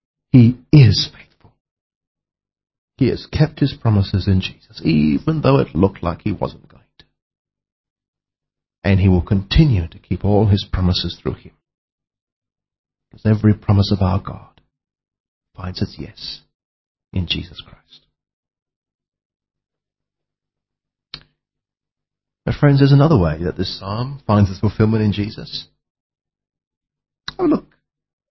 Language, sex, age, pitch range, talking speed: English, male, 40-59, 100-145 Hz, 120 wpm